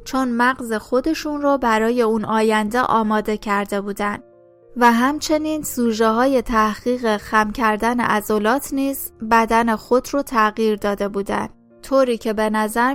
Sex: female